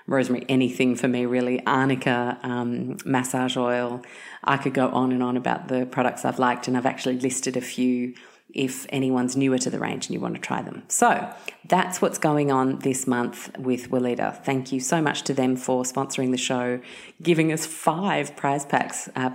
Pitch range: 125-160 Hz